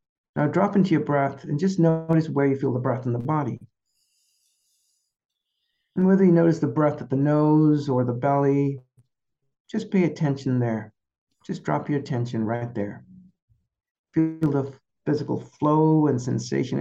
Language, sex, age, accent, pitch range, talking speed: English, male, 60-79, American, 130-160 Hz, 155 wpm